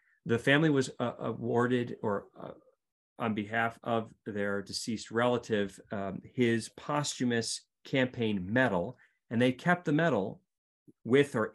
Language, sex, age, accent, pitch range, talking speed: English, male, 40-59, American, 105-130 Hz, 130 wpm